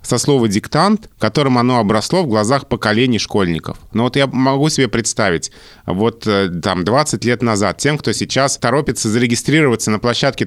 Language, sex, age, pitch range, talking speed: Russian, male, 30-49, 105-130 Hz, 160 wpm